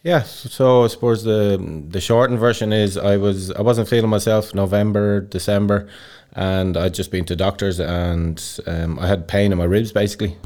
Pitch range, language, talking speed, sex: 85-100 Hz, English, 195 wpm, male